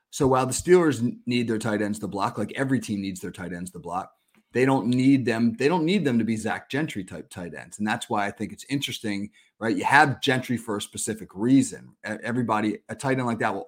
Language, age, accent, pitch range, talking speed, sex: English, 30-49, American, 105-125 Hz, 245 wpm, male